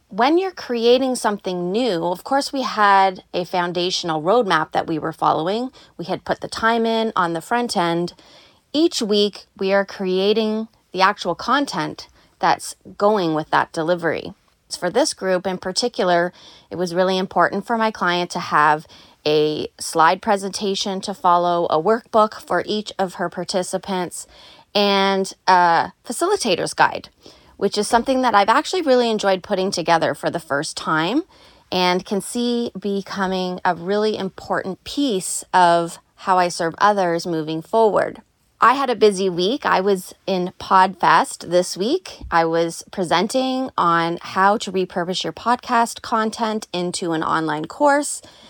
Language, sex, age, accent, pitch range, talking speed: English, female, 30-49, American, 180-225 Hz, 150 wpm